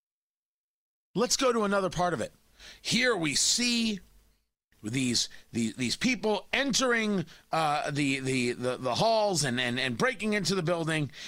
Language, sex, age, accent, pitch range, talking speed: English, male, 40-59, American, 175-255 Hz, 150 wpm